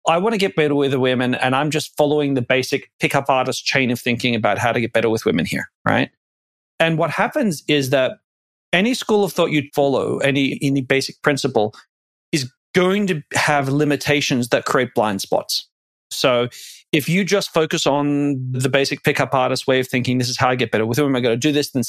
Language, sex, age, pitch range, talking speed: English, male, 30-49, 130-160 Hz, 215 wpm